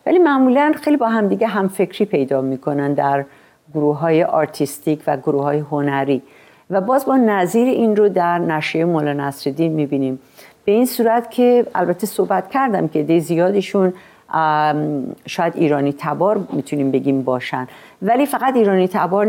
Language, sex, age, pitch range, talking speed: Persian, female, 50-69, 145-195 Hz, 145 wpm